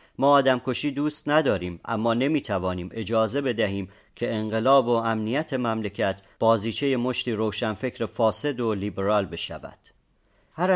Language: Persian